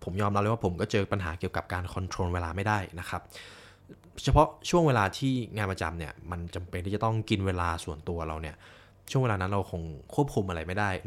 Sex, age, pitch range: male, 20-39, 90-115 Hz